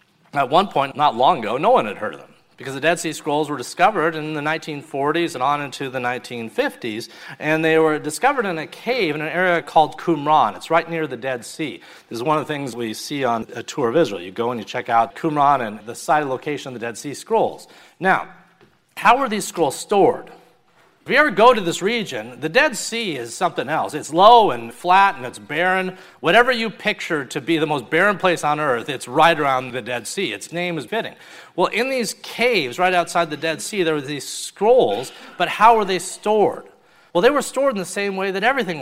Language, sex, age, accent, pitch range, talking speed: English, male, 40-59, American, 135-185 Hz, 230 wpm